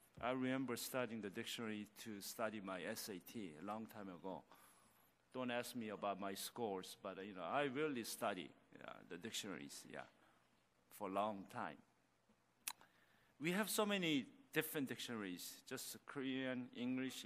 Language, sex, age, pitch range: Korean, male, 50-69, 95-160 Hz